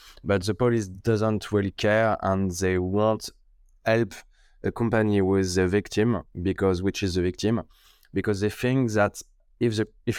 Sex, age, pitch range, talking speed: male, 20-39, 90-105 Hz, 160 wpm